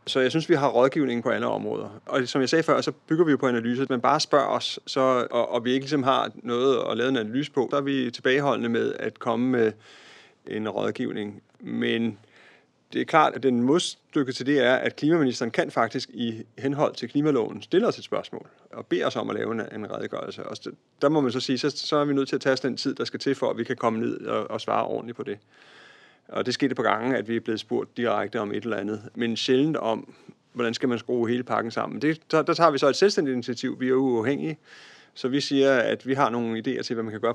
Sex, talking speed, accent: male, 255 wpm, native